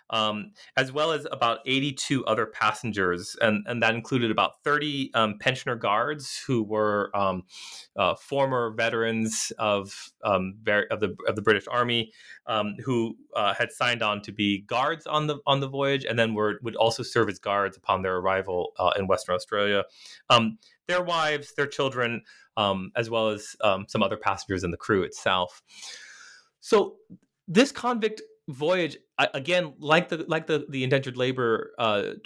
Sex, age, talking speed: male, 30-49, 165 wpm